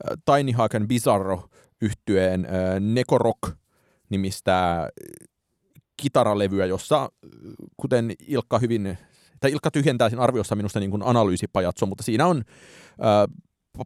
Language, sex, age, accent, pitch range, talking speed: Finnish, male, 30-49, native, 90-115 Hz, 90 wpm